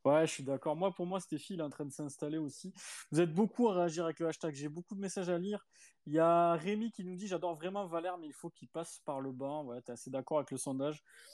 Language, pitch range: French, 145-175 Hz